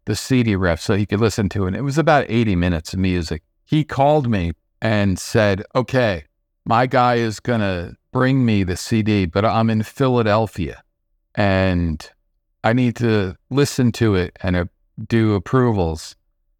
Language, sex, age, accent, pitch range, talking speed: English, male, 40-59, American, 90-120 Hz, 165 wpm